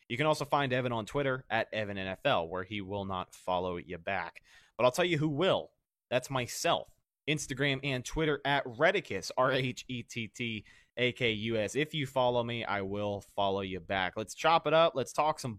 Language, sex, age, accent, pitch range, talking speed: English, male, 30-49, American, 110-145 Hz, 175 wpm